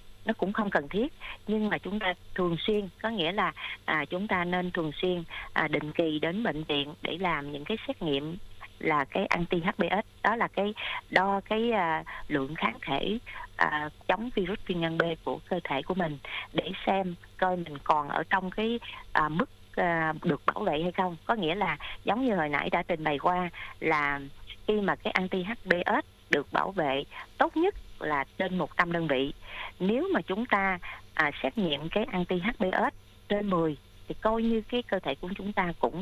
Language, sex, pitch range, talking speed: Vietnamese, female, 160-205 Hz, 200 wpm